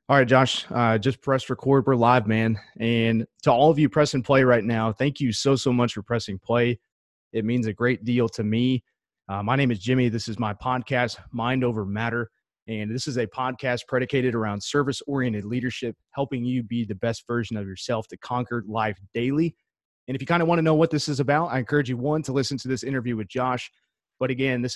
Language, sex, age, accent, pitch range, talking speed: English, male, 30-49, American, 110-130 Hz, 225 wpm